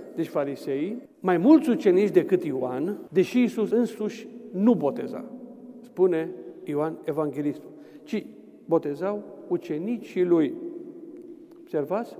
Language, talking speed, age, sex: Romanian, 100 wpm, 50-69, male